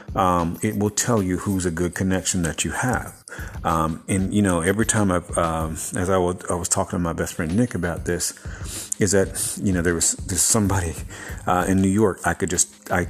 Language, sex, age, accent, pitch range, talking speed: English, male, 50-69, American, 85-105 Hz, 220 wpm